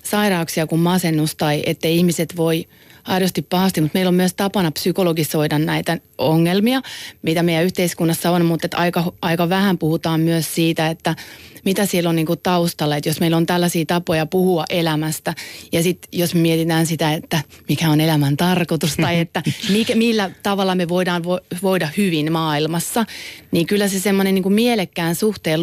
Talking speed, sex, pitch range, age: 170 wpm, female, 165-185 Hz, 30-49